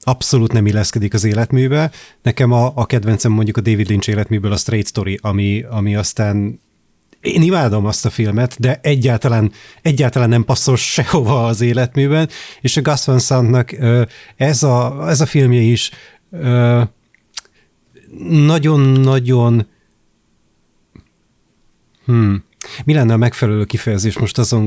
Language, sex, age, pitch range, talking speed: Hungarian, male, 30-49, 105-130 Hz, 125 wpm